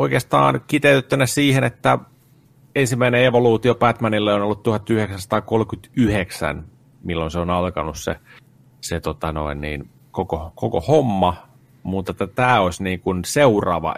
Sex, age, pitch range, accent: male, 30-49, 85-115 Hz, native